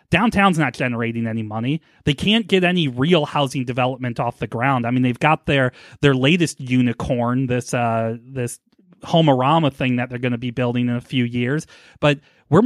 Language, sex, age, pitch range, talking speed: English, male, 30-49, 130-180 Hz, 190 wpm